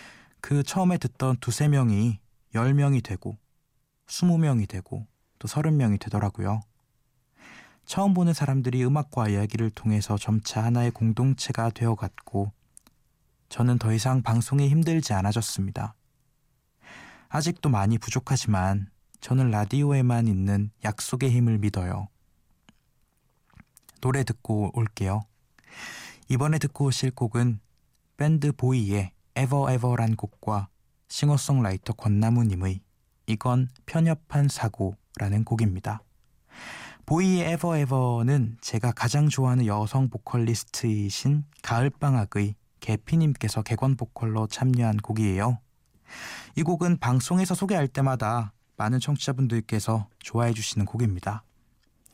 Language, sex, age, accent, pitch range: Korean, male, 20-39, native, 110-135 Hz